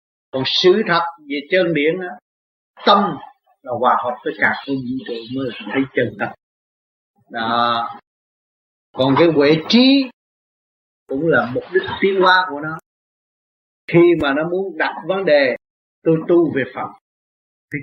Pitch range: 130-180 Hz